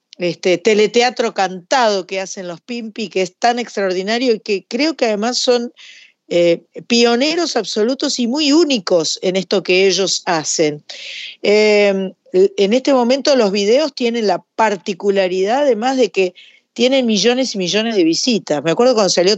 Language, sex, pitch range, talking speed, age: Spanish, female, 180-255 Hz, 150 wpm, 40-59